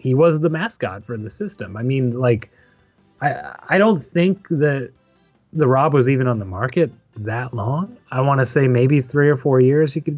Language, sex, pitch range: English, male, 110-145 Hz